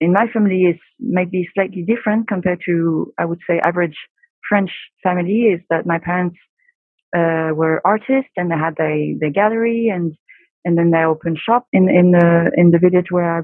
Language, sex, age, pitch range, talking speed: English, female, 30-49, 160-195 Hz, 185 wpm